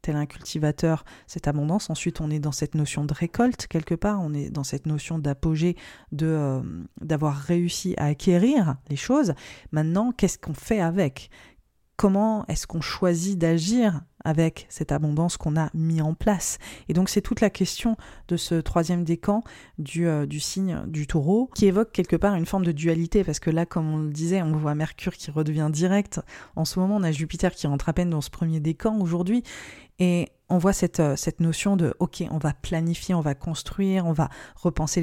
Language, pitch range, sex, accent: French, 155-190 Hz, female, French